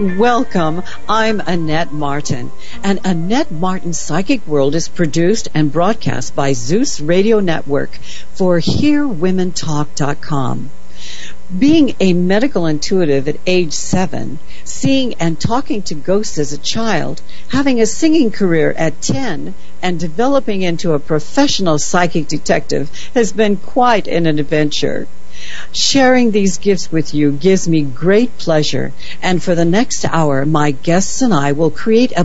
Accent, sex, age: American, female, 60-79